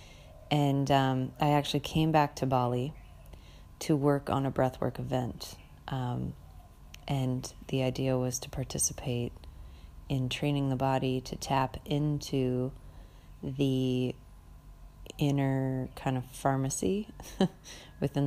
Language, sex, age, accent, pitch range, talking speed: English, female, 30-49, American, 125-145 Hz, 110 wpm